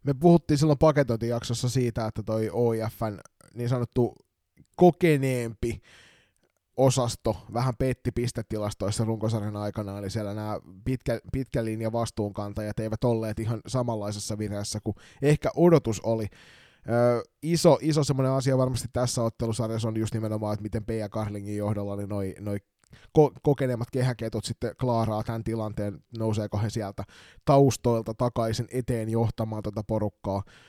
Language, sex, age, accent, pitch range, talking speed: Finnish, male, 20-39, native, 105-120 Hz, 135 wpm